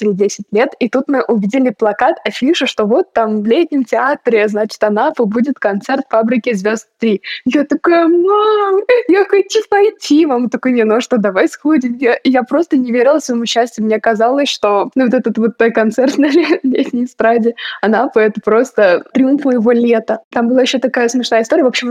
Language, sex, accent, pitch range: Russian, female, native, 220-265 Hz